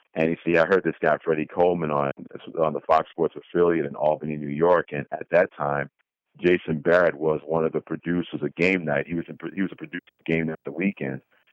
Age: 50-69